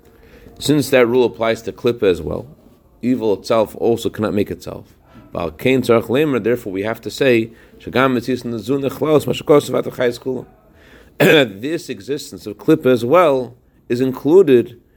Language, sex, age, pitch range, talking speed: English, male, 40-59, 95-130 Hz, 110 wpm